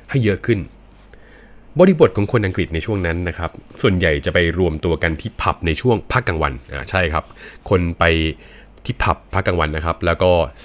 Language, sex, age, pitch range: Thai, male, 20-39, 80-100 Hz